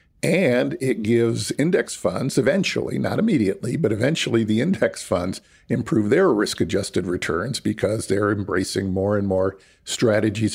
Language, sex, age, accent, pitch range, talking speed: English, male, 50-69, American, 100-120 Hz, 135 wpm